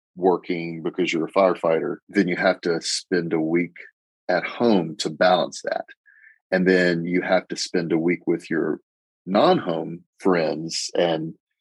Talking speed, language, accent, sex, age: 155 wpm, English, American, male, 40-59